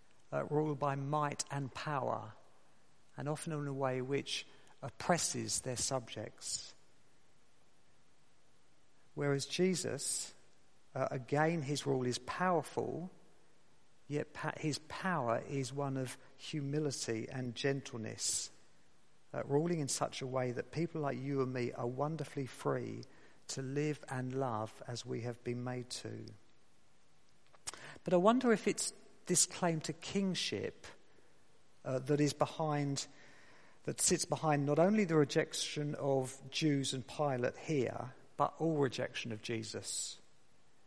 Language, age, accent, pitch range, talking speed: English, 50-69, British, 125-155 Hz, 130 wpm